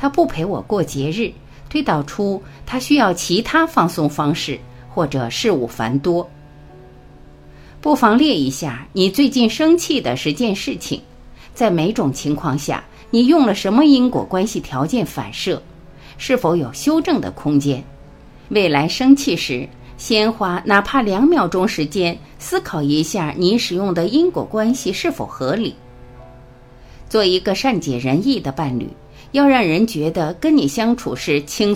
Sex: female